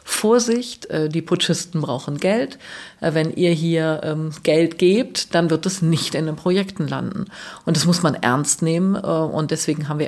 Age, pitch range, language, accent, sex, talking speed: 50-69, 160-200 Hz, German, German, female, 165 wpm